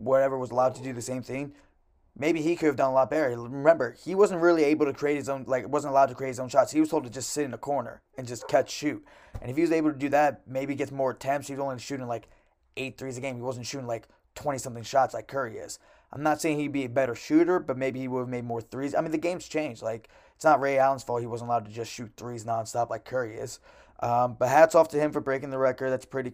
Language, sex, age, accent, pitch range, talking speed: English, male, 20-39, American, 120-140 Hz, 290 wpm